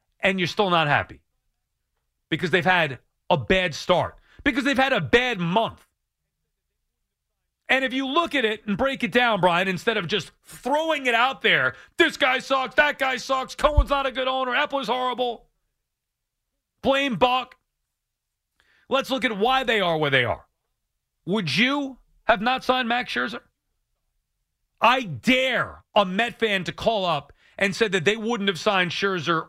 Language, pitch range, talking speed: English, 175-255 Hz, 170 wpm